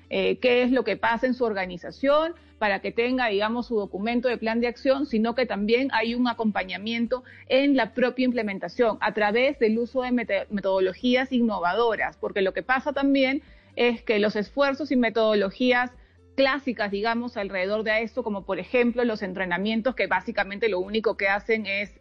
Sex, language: female, Spanish